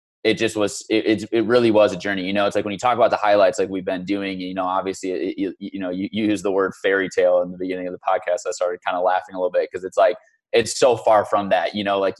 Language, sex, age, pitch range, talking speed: English, male, 20-39, 95-110 Hz, 300 wpm